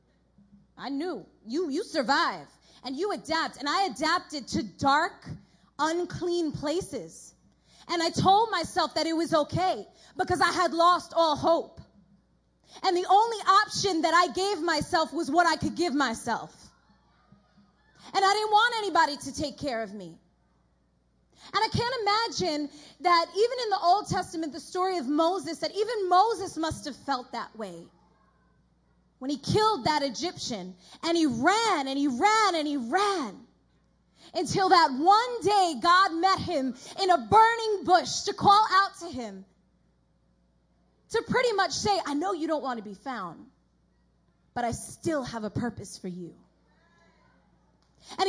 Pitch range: 275-375 Hz